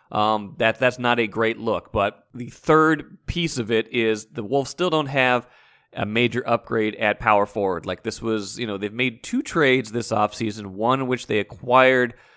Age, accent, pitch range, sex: 30-49, American, 110-125 Hz, male